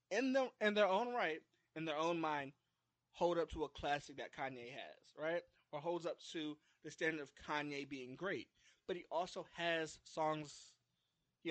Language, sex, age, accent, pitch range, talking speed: English, male, 20-39, American, 140-170 Hz, 180 wpm